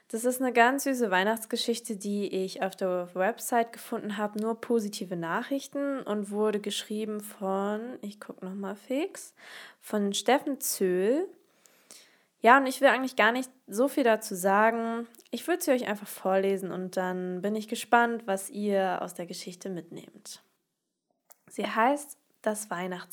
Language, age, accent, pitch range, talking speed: German, 20-39, German, 190-235 Hz, 155 wpm